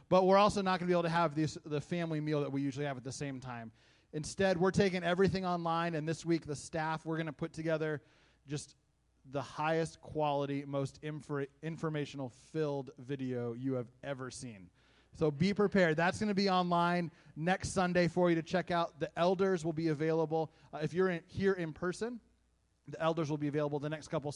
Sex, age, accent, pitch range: male, 30-49, American, 145-170 Hz